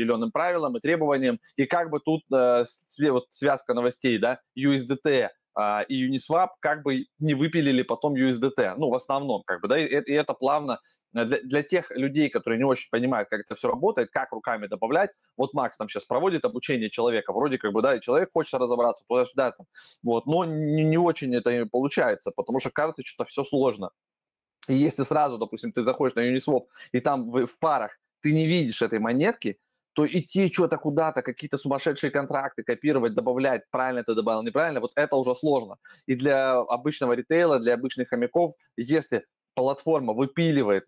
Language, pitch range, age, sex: Russian, 120-155 Hz, 20-39, male